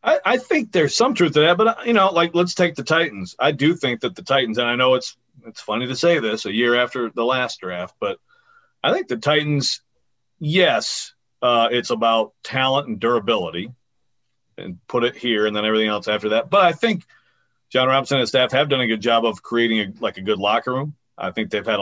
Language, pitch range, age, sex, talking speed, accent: English, 110-130 Hz, 40-59, male, 230 wpm, American